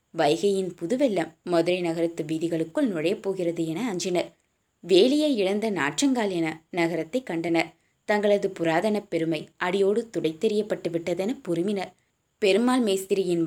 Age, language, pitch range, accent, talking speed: 20-39, Tamil, 170-210 Hz, native, 105 wpm